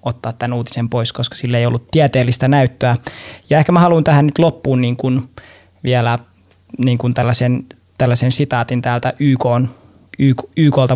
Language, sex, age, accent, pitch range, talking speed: Finnish, male, 20-39, native, 120-130 Hz, 155 wpm